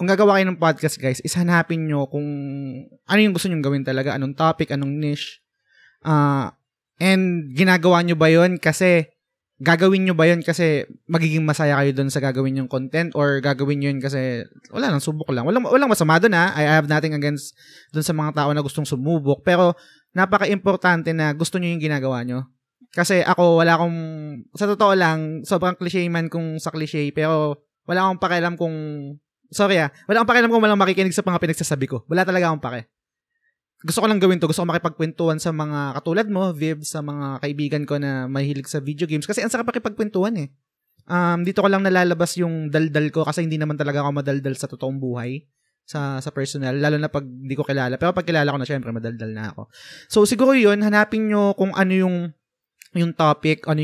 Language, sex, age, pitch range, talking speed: Filipino, male, 20-39, 145-180 Hz, 195 wpm